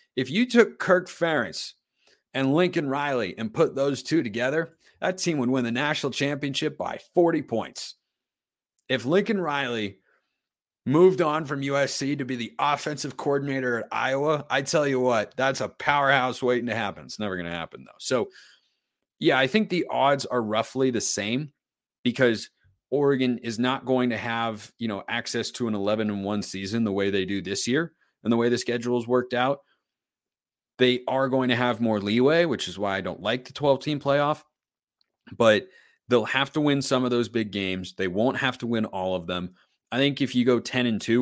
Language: English